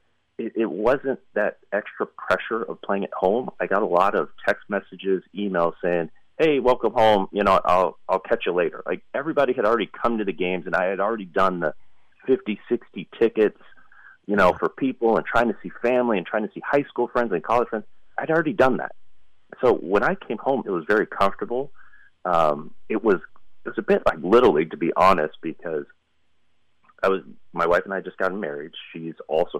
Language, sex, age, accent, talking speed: English, male, 30-49, American, 205 wpm